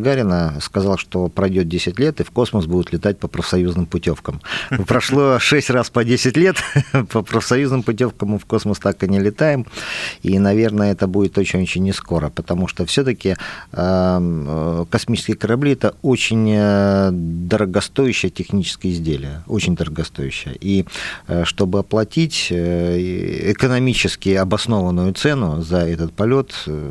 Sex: male